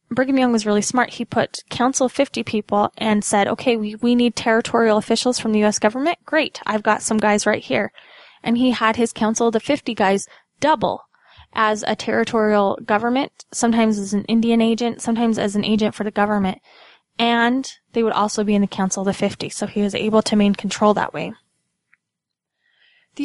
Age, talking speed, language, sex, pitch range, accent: 10-29, 200 wpm, English, female, 210-240 Hz, American